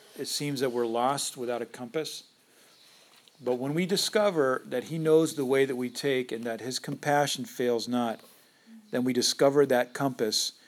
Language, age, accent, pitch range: English, 40-59, American, 120-140 Hz